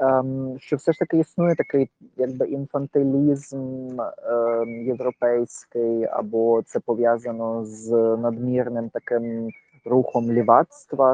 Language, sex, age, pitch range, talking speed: Ukrainian, male, 20-39, 120-150 Hz, 100 wpm